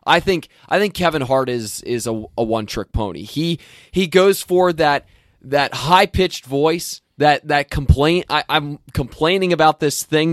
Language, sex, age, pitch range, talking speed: English, male, 20-39, 125-165 Hz, 180 wpm